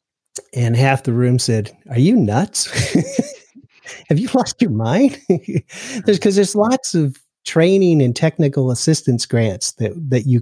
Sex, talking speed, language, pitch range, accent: male, 150 wpm, English, 120-150 Hz, American